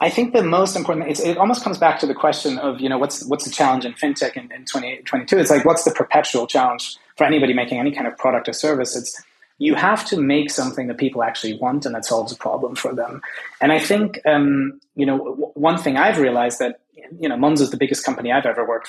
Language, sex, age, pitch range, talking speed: English, male, 30-49, 125-155 Hz, 250 wpm